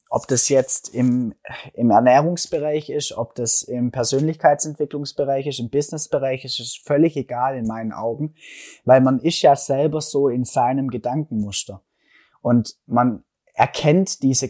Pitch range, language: 115-140 Hz, German